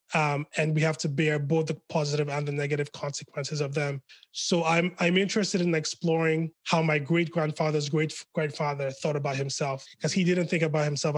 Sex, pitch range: male, 145-170 Hz